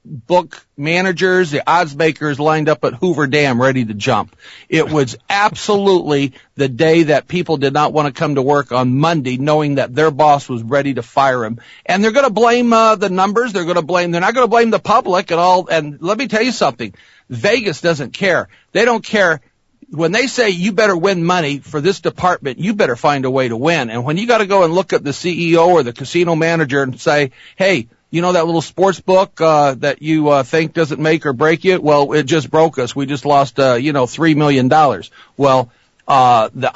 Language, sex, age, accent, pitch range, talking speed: English, male, 50-69, American, 140-180 Hz, 225 wpm